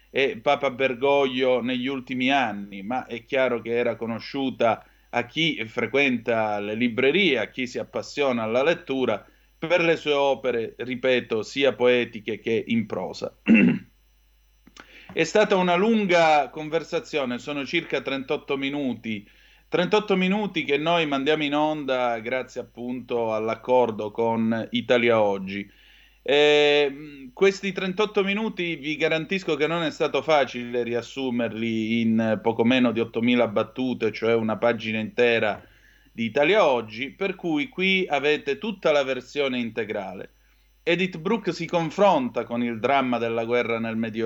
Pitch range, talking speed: 120-170 Hz, 135 wpm